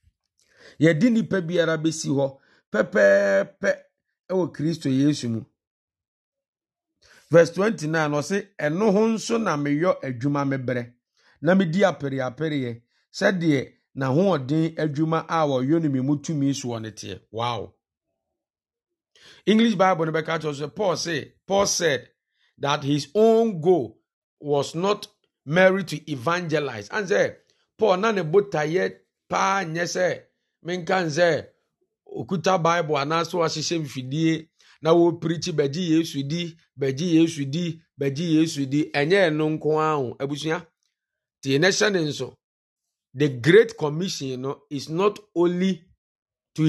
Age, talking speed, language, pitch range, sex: 50-69, 105 wpm, English, 140-185 Hz, male